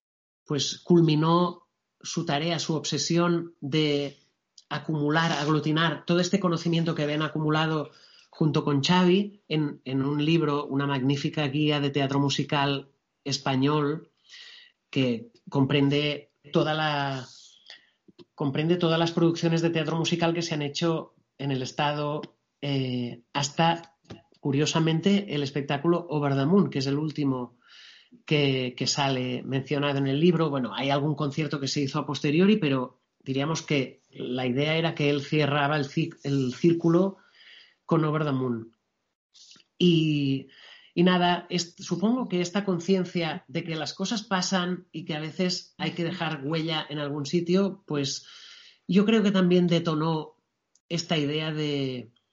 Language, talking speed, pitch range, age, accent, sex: Spanish, 140 wpm, 145-175 Hz, 30-49, Spanish, male